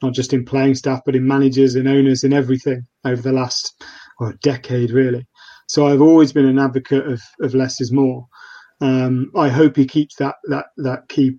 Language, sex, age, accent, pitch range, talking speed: English, male, 30-49, British, 130-140 Hz, 200 wpm